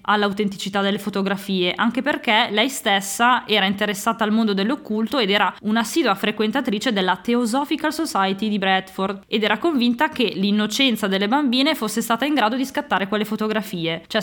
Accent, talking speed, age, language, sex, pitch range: native, 155 wpm, 20-39, Italian, female, 195-240 Hz